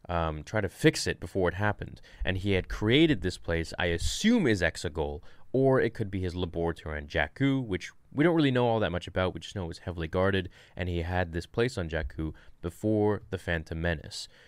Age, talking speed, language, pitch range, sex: 20-39, 220 wpm, English, 85-115 Hz, male